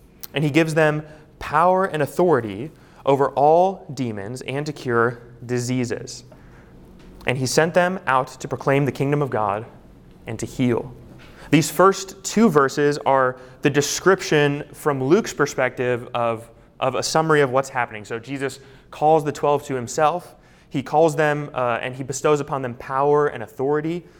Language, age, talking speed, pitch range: English, 30-49, 160 wpm, 125-150 Hz